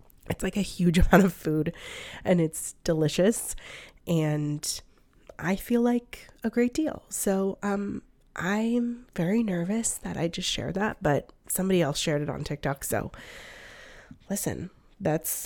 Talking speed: 145 wpm